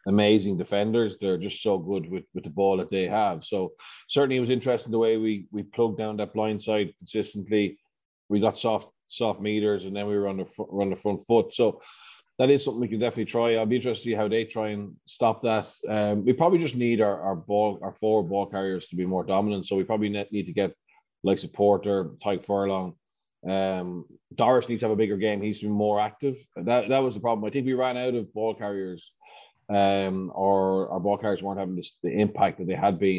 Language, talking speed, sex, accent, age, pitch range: English, 230 wpm, male, Irish, 20-39, 95-115 Hz